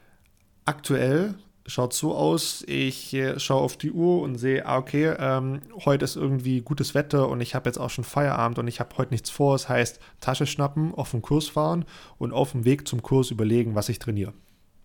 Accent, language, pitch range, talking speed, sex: German, German, 115-140 Hz, 200 wpm, male